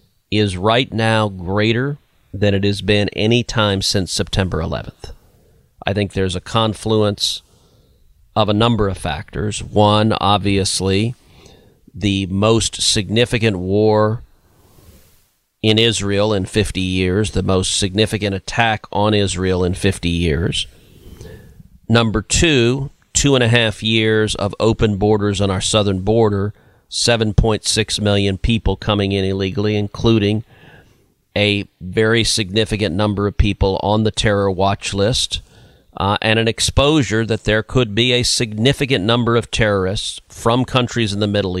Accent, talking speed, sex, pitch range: American, 135 wpm, male, 100-115 Hz